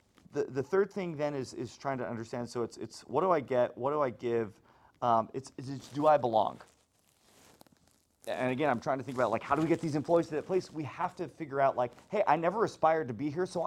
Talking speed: 255 wpm